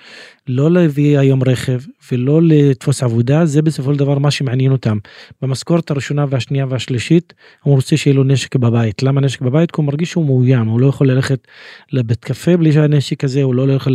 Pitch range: 130-155 Hz